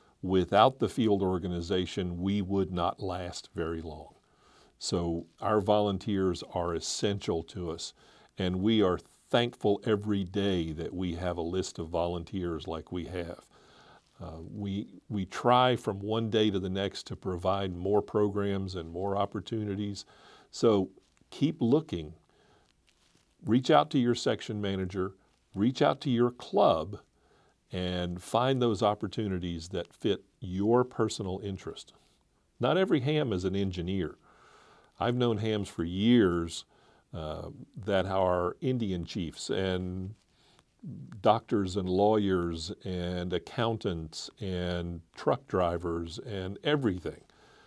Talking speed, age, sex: 125 wpm, 50-69, male